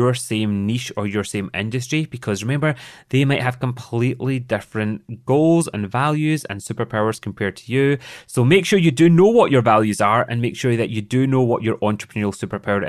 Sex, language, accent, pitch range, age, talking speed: male, English, British, 105-125 Hz, 30-49, 200 wpm